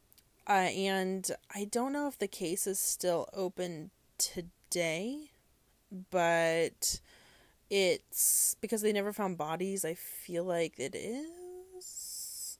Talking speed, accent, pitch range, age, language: 115 wpm, American, 170-205 Hz, 20-39, English